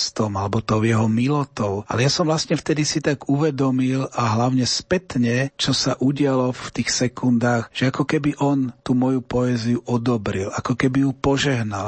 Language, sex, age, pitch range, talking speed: Slovak, male, 40-59, 110-130 Hz, 170 wpm